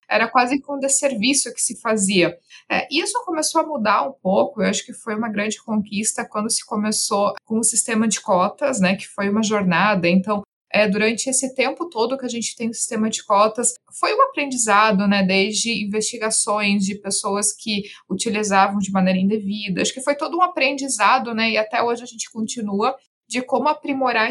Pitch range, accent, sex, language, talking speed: 205-260 Hz, Brazilian, female, Portuguese, 195 wpm